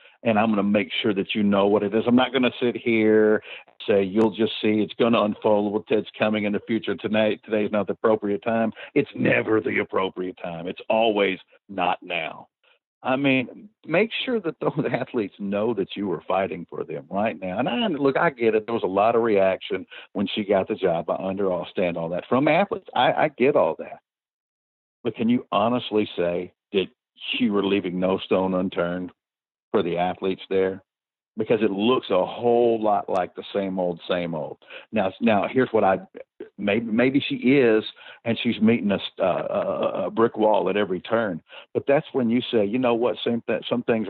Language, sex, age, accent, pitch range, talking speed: English, male, 50-69, American, 95-115 Hz, 210 wpm